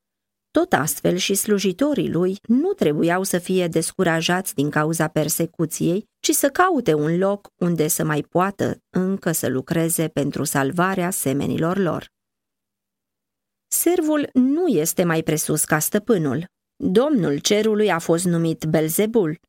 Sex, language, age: female, Romanian, 30-49